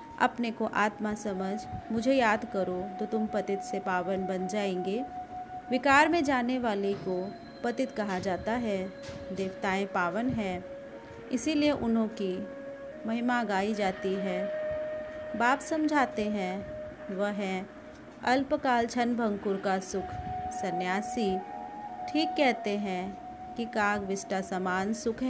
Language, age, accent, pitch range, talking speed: Hindi, 30-49, native, 190-265 Hz, 125 wpm